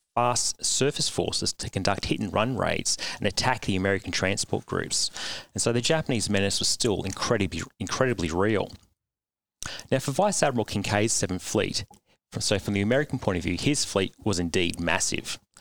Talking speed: 165 wpm